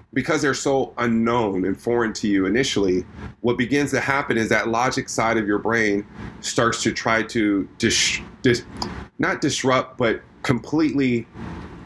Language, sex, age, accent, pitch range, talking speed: English, male, 30-49, American, 105-120 Hz, 140 wpm